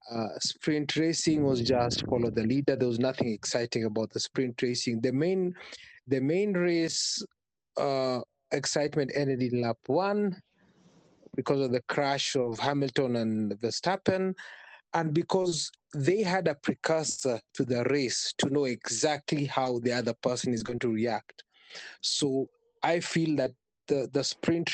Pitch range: 125-175 Hz